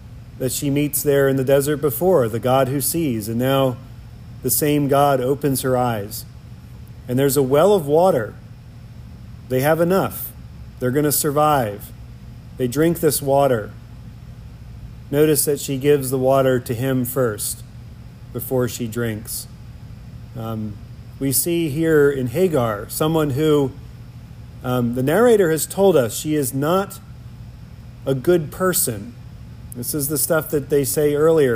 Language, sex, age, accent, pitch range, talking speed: English, male, 40-59, American, 120-145 Hz, 145 wpm